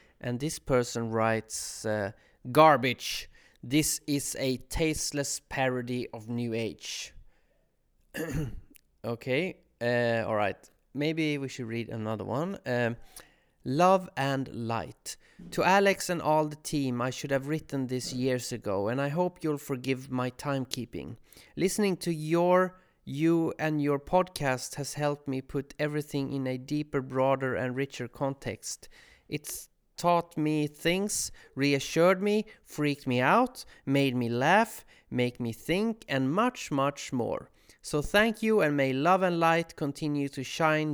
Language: English